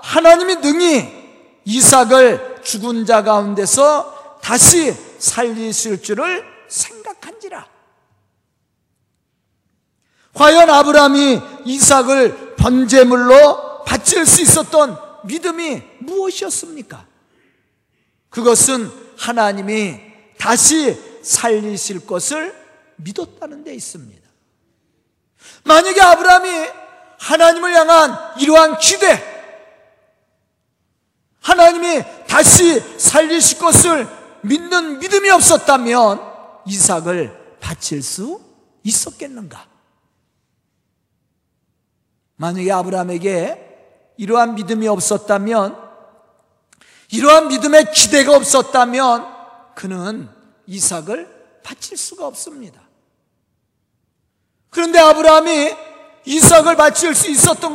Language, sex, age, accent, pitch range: Korean, male, 40-59, native, 220-320 Hz